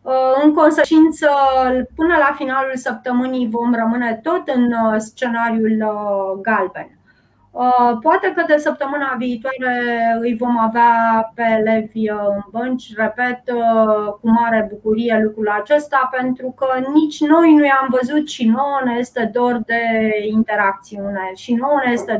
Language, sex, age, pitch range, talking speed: Romanian, female, 20-39, 230-275 Hz, 130 wpm